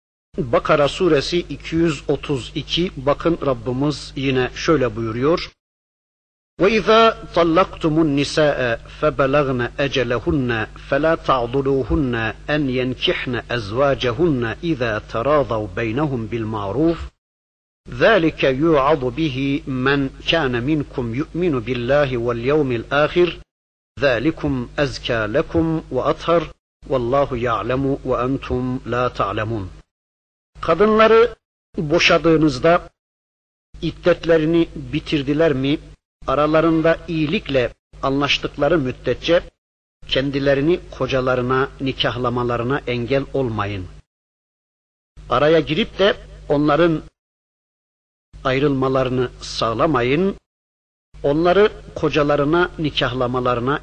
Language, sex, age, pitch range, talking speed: Turkish, male, 50-69, 125-160 Hz, 65 wpm